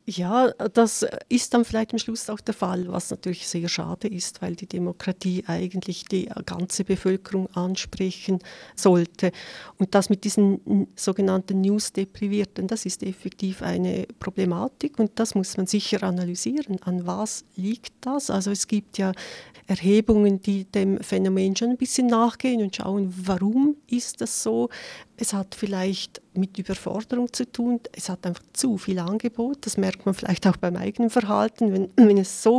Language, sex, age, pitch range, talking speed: German, female, 40-59, 190-220 Hz, 160 wpm